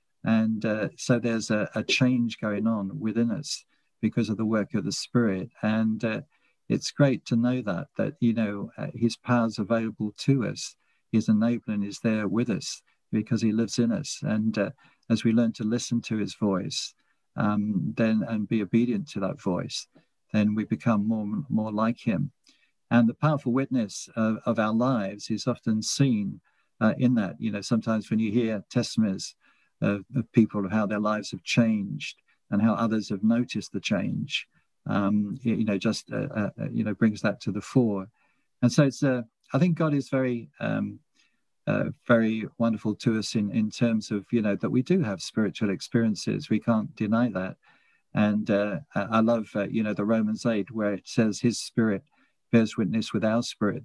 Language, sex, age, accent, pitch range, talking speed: English, male, 50-69, British, 105-120 Hz, 190 wpm